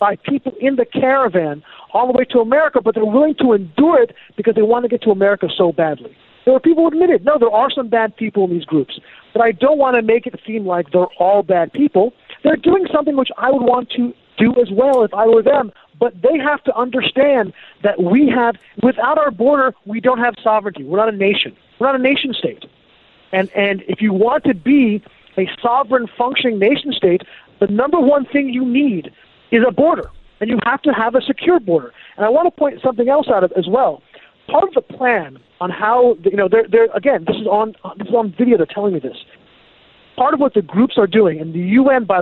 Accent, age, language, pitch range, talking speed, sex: American, 40-59, English, 185-260 Hz, 230 wpm, male